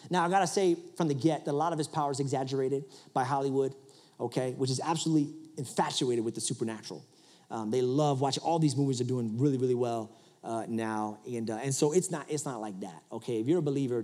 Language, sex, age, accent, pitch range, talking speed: English, male, 30-49, American, 120-160 Hz, 235 wpm